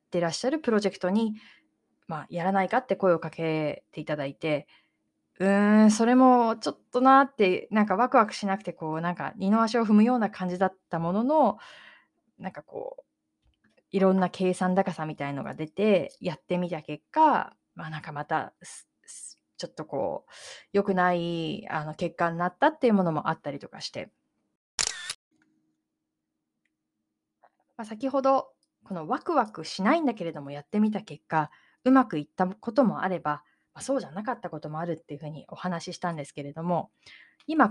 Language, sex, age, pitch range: Japanese, female, 20-39, 155-235 Hz